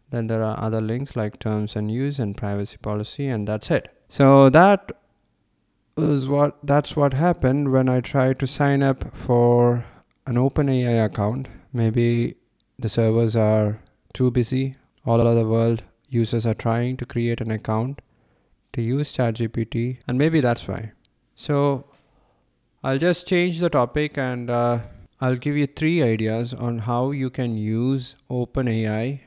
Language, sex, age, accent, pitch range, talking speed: English, male, 20-39, Indian, 110-135 Hz, 155 wpm